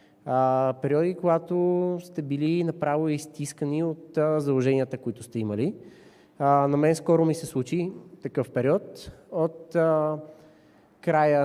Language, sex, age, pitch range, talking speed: Bulgarian, male, 20-39, 135-165 Hz, 130 wpm